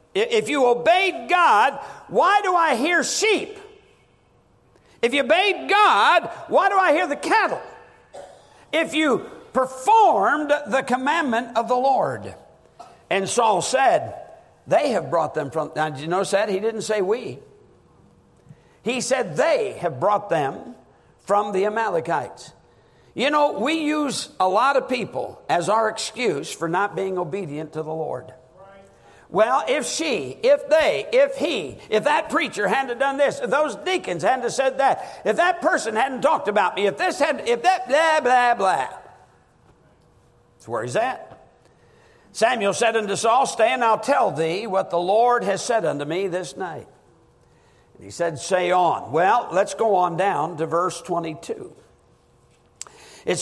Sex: male